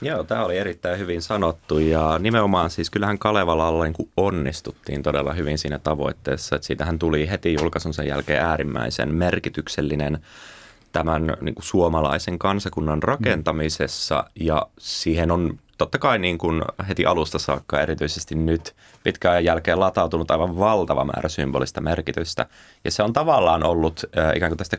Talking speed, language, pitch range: 135 wpm, Finnish, 75-95 Hz